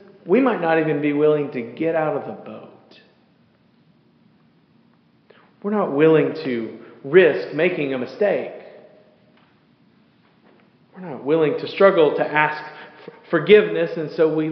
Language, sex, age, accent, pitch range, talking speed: English, male, 40-59, American, 135-190 Hz, 130 wpm